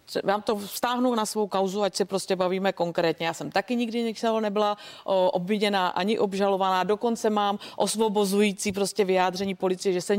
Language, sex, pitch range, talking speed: Czech, female, 170-195 Hz, 165 wpm